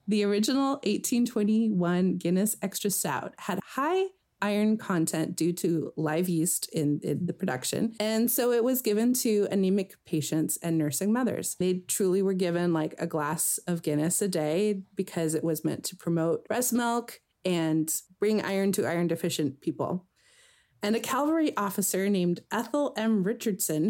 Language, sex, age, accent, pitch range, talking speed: English, female, 30-49, American, 175-230 Hz, 160 wpm